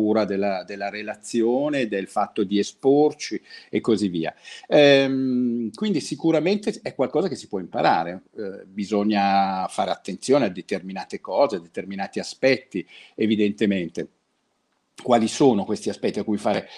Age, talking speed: 50-69, 130 wpm